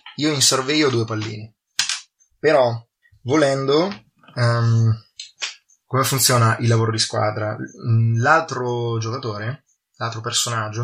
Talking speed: 105 wpm